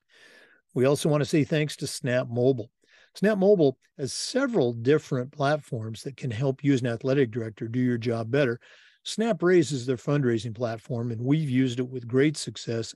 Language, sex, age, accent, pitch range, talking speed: English, male, 50-69, American, 125-155 Hz, 180 wpm